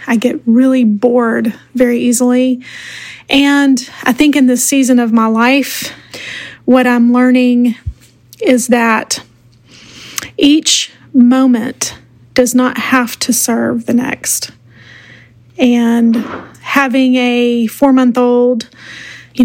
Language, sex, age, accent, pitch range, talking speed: English, female, 30-49, American, 235-255 Hz, 105 wpm